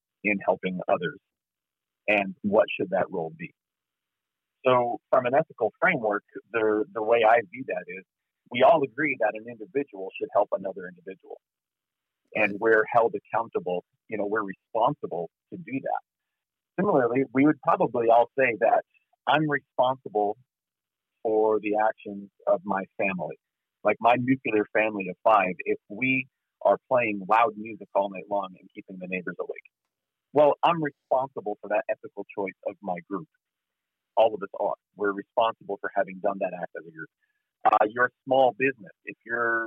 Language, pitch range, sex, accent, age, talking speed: English, 100-135 Hz, male, American, 40-59, 160 wpm